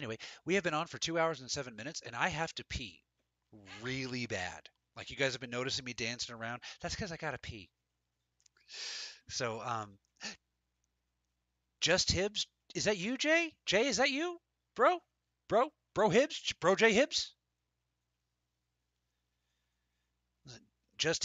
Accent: American